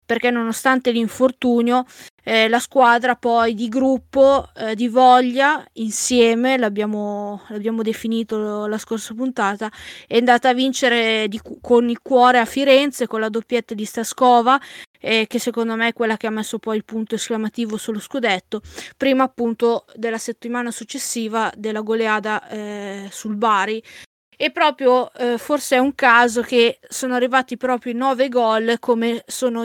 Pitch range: 225-255 Hz